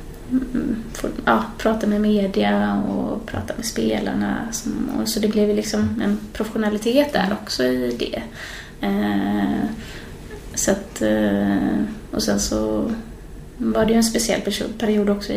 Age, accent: 20-39, native